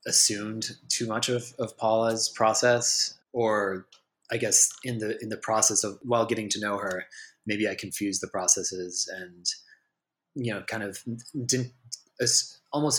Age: 20-39